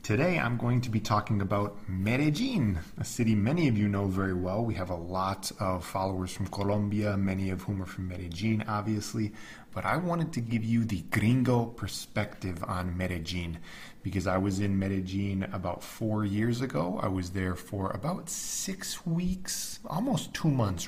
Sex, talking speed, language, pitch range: male, 175 wpm, English, 95-115 Hz